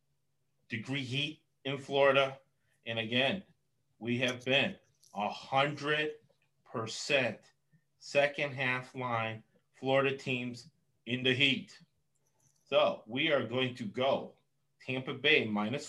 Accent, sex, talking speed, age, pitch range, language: American, male, 100 wpm, 30-49, 125-145 Hz, English